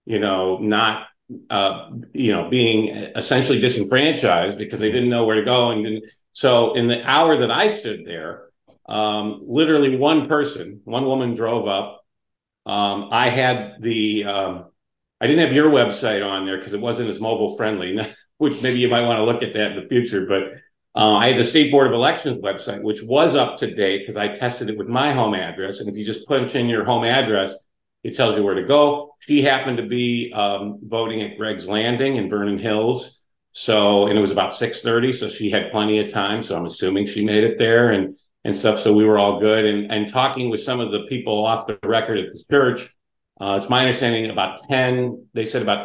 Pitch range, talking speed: 100-125 Hz, 215 wpm